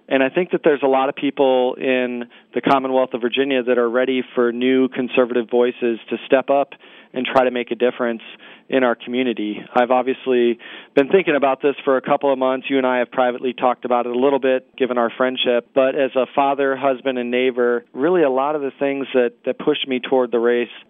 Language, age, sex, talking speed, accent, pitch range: English, 40-59, male, 225 wpm, American, 120-130 Hz